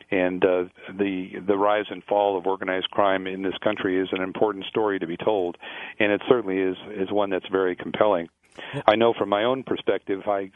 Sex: male